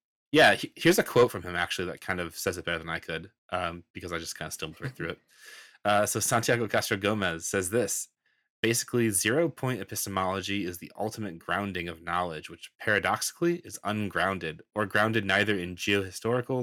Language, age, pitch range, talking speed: English, 20-39, 90-105 Hz, 190 wpm